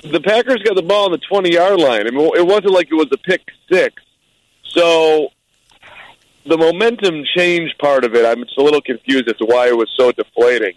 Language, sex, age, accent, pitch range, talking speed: English, male, 40-59, American, 125-180 Hz, 210 wpm